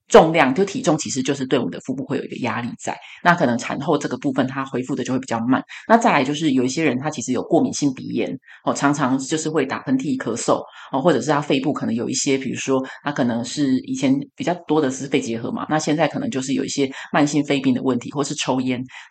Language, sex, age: Chinese, female, 20-39